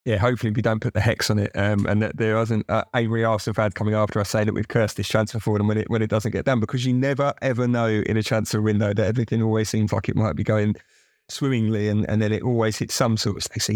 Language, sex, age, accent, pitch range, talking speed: English, male, 30-49, British, 105-120 Hz, 290 wpm